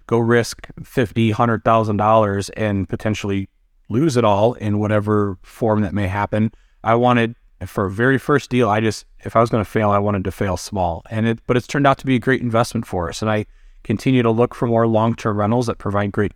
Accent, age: American, 30-49